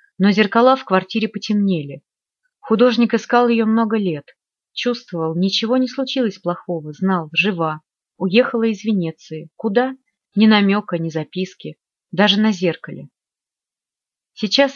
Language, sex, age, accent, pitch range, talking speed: Russian, female, 30-49, native, 170-225 Hz, 120 wpm